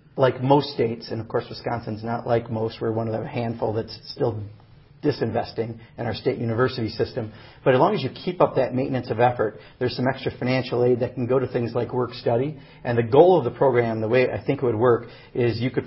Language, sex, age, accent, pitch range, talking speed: English, male, 40-59, American, 115-135 Hz, 235 wpm